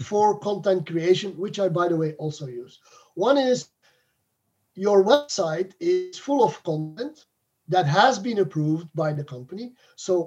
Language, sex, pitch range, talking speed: English, male, 150-215 Hz, 150 wpm